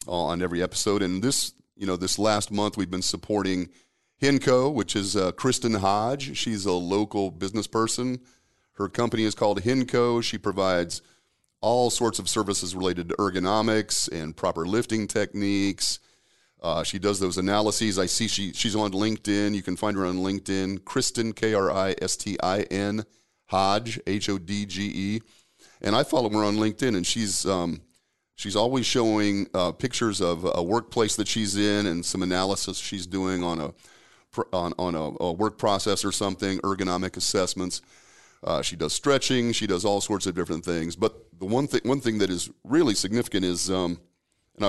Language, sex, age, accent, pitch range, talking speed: English, male, 40-59, American, 90-110 Hz, 165 wpm